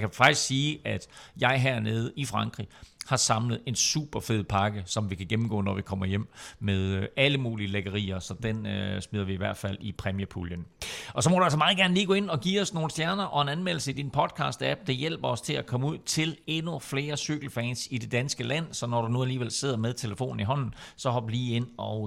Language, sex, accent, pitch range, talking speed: Danish, male, native, 110-140 Hz, 240 wpm